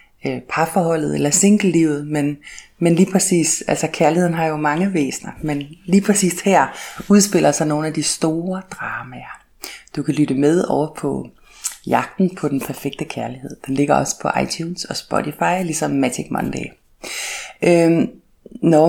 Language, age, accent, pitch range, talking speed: Danish, 30-49, native, 160-200 Hz, 150 wpm